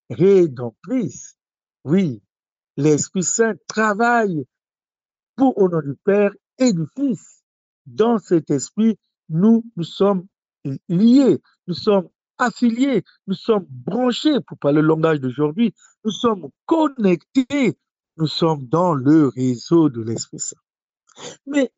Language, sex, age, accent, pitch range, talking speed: French, male, 60-79, French, 160-230 Hz, 120 wpm